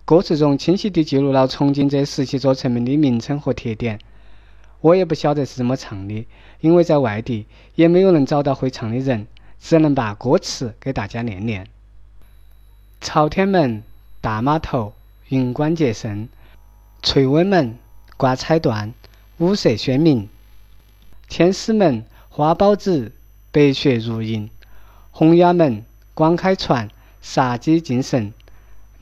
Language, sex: Chinese, male